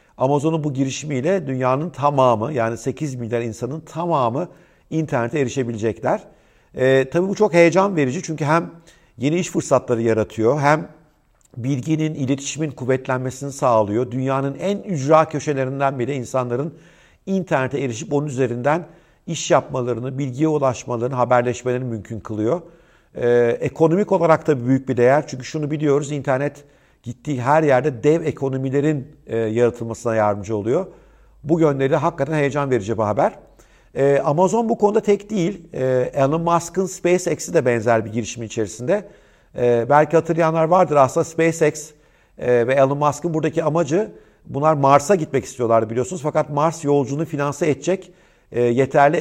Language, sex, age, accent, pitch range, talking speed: Turkish, male, 50-69, native, 125-160 Hz, 130 wpm